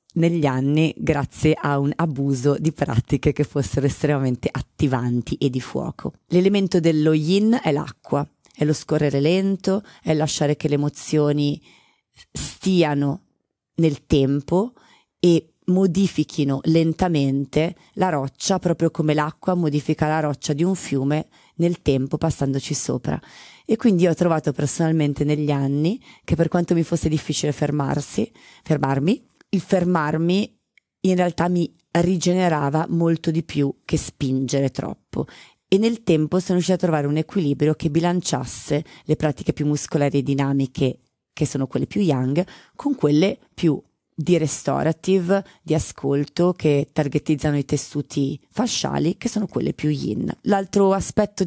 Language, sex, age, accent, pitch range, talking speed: Italian, female, 30-49, native, 145-175 Hz, 140 wpm